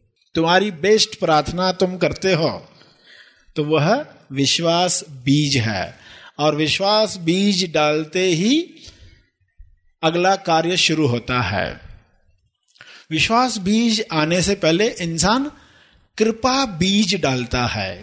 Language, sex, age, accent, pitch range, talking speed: Hindi, male, 50-69, native, 150-225 Hz, 105 wpm